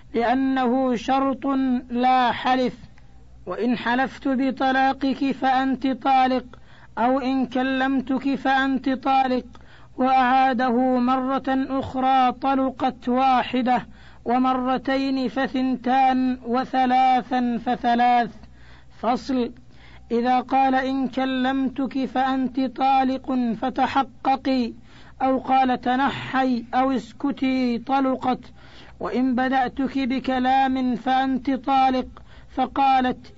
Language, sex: Arabic, female